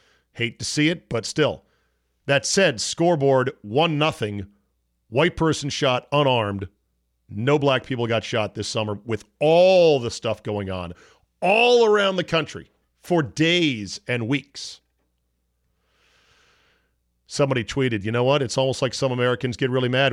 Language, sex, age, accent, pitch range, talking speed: English, male, 40-59, American, 100-135 Hz, 145 wpm